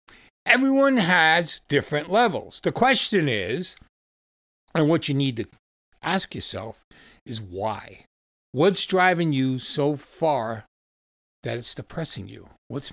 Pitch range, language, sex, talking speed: 125-185 Hz, English, male, 120 wpm